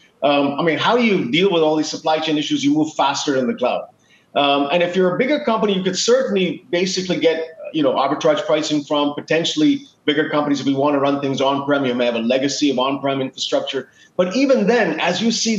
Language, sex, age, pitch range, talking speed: English, male, 40-59, 140-185 Hz, 230 wpm